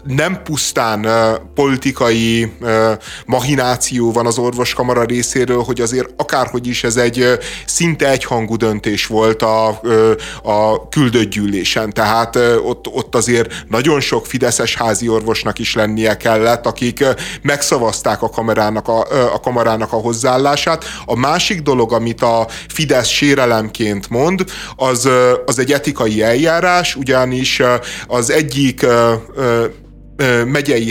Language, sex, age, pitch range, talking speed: Hungarian, male, 30-49, 115-135 Hz, 115 wpm